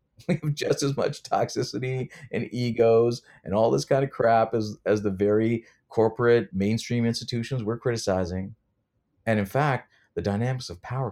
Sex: male